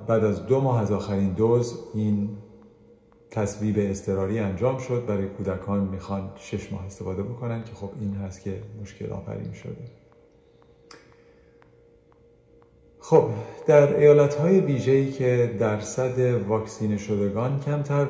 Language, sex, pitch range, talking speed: Persian, male, 105-125 Hz, 120 wpm